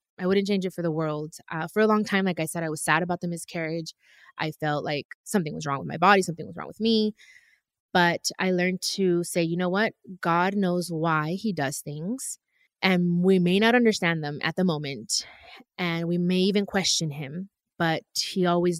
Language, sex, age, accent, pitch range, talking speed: English, female, 20-39, American, 165-210 Hz, 215 wpm